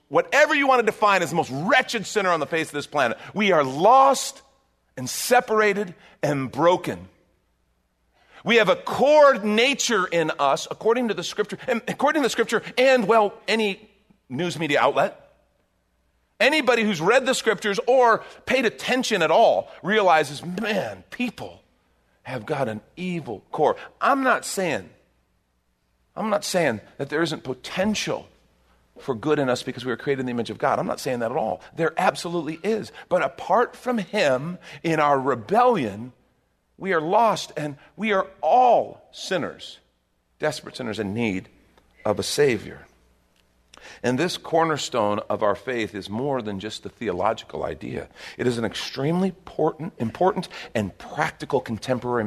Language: English